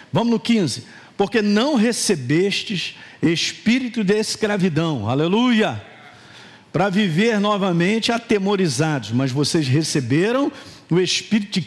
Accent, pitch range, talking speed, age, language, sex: Brazilian, 170-235 Hz, 105 wpm, 50-69, Portuguese, male